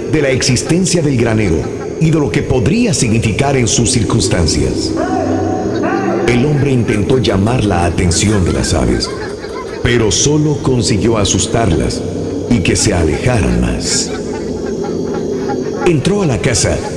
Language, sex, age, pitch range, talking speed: Spanish, male, 50-69, 105-150 Hz, 125 wpm